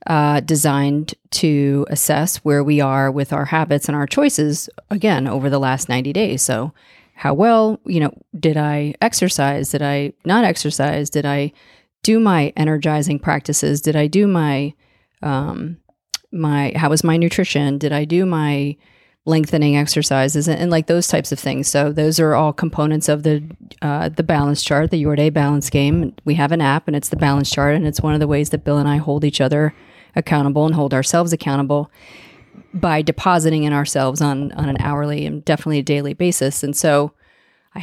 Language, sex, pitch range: English, female, 145-160 Hz